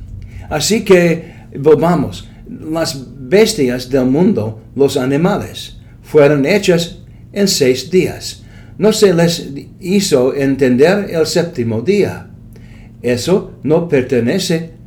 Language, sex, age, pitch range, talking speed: English, male, 60-79, 120-170 Hz, 100 wpm